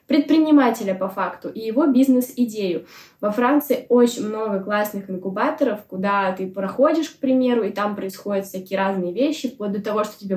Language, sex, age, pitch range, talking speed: Russian, female, 10-29, 195-255 Hz, 160 wpm